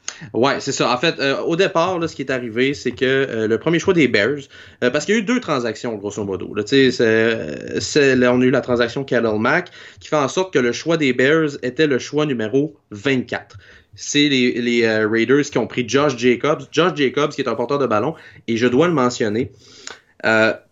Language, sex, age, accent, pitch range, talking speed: French, male, 30-49, Canadian, 110-145 Hz, 230 wpm